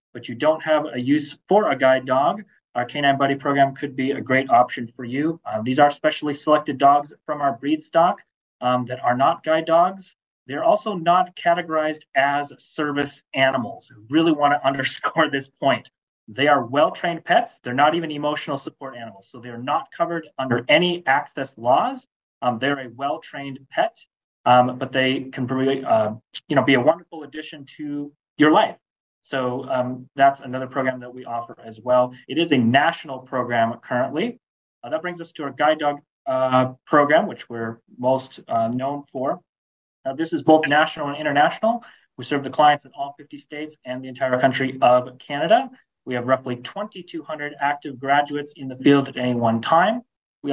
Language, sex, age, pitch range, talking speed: English, male, 30-49, 130-155 Hz, 185 wpm